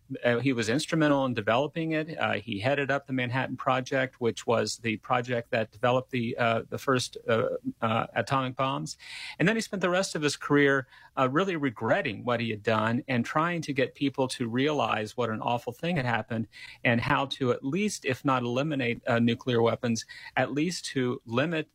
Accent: American